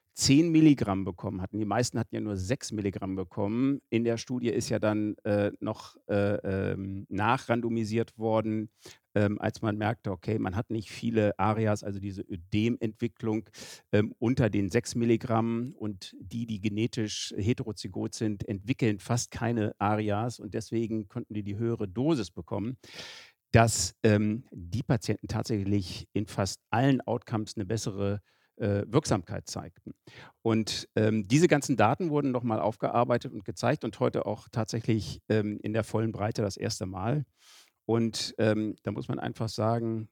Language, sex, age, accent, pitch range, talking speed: German, male, 50-69, German, 105-120 Hz, 155 wpm